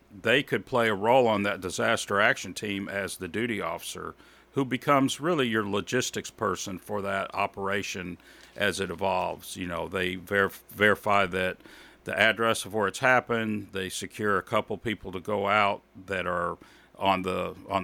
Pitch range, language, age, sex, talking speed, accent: 95-115 Hz, English, 50-69, male, 170 wpm, American